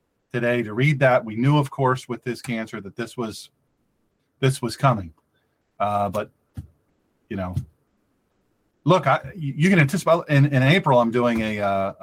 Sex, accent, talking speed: male, American, 165 wpm